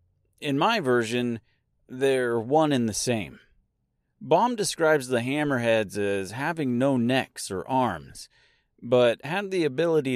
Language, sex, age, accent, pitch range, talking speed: English, male, 40-59, American, 110-155 Hz, 130 wpm